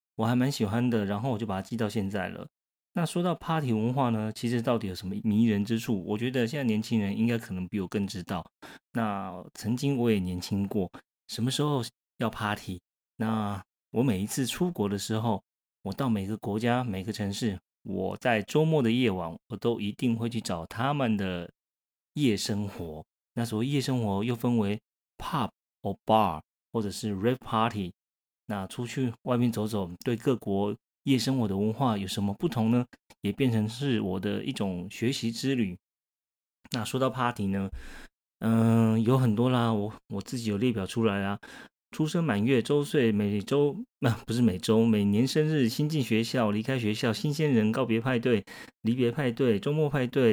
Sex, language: male, Chinese